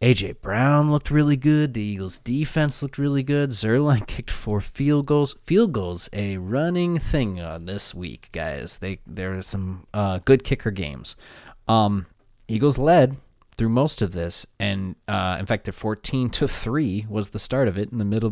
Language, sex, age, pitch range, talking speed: English, male, 20-39, 95-130 Hz, 180 wpm